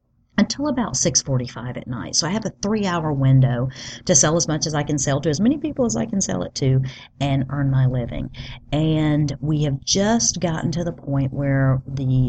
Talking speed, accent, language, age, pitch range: 210 wpm, American, English, 40-59, 130-155 Hz